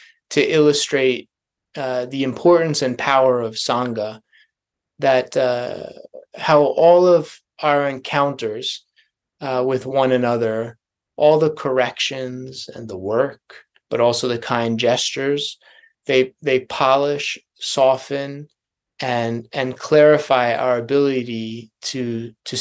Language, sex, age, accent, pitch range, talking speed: English, male, 20-39, American, 125-150 Hz, 110 wpm